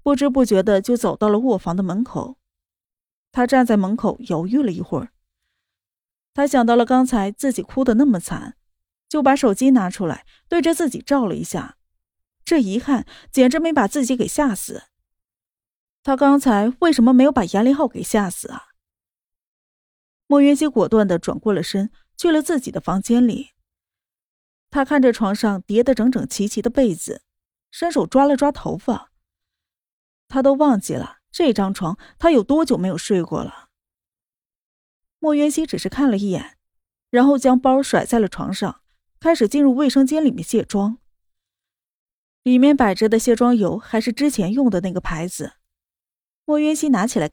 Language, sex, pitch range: Chinese, female, 190-275 Hz